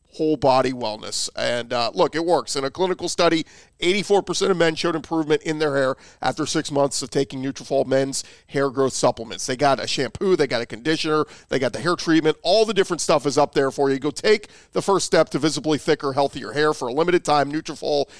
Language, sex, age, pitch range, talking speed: English, male, 40-59, 135-175 Hz, 220 wpm